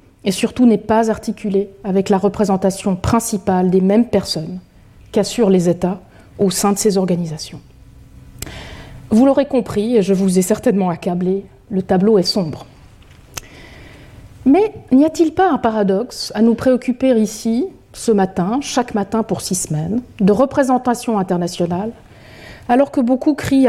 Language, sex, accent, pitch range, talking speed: French, female, French, 185-230 Hz, 145 wpm